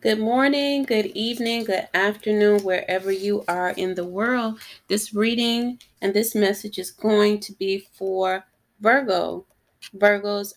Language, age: English, 30-49